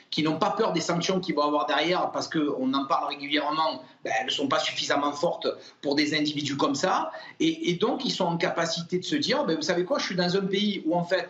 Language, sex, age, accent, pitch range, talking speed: French, male, 40-59, French, 170-265 Hz, 260 wpm